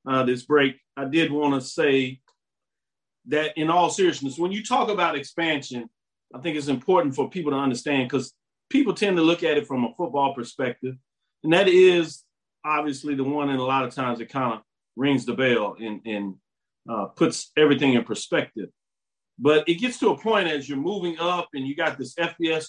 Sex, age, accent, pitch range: male, 40-59, American, 125-160 Hz